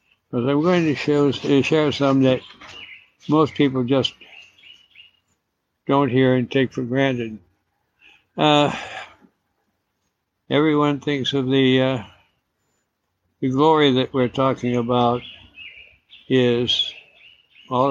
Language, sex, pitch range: English, male, 120-140 Hz